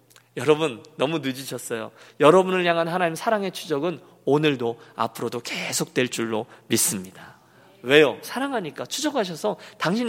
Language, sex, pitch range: Korean, male, 145-230 Hz